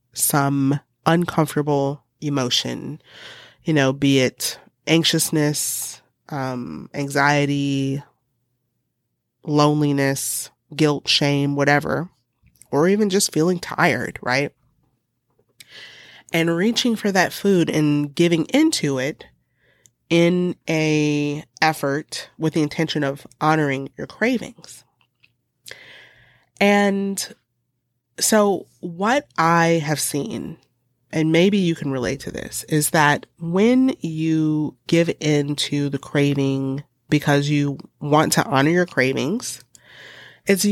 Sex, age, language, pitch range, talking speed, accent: female, 30-49, English, 140-175 Hz, 100 wpm, American